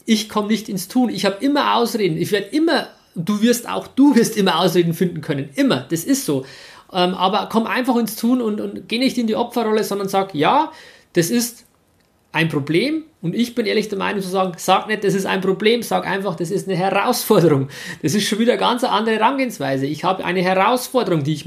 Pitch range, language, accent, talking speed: 180-225 Hz, German, German, 220 wpm